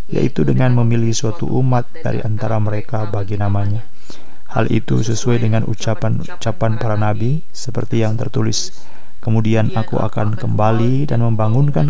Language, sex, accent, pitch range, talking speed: Indonesian, male, native, 105-120 Hz, 135 wpm